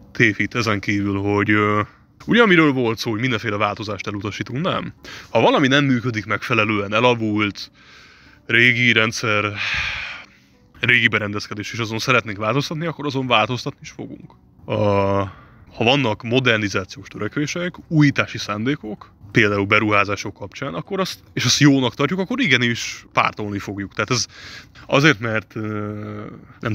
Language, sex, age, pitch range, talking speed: Hungarian, male, 20-39, 100-130 Hz, 125 wpm